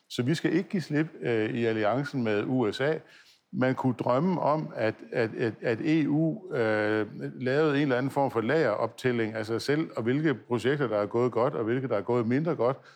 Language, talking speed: Danish, 215 wpm